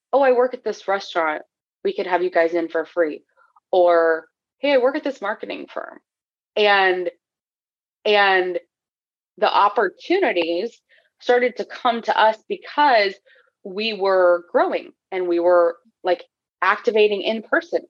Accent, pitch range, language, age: American, 175-255 Hz, English, 20-39